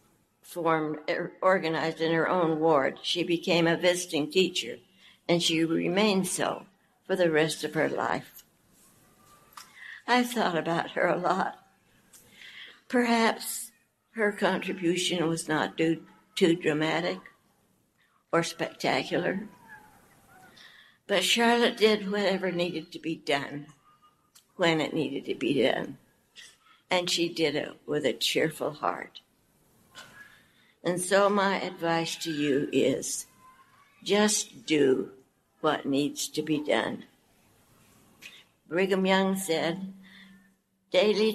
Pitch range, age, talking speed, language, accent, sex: 160-195 Hz, 60-79, 110 wpm, English, American, female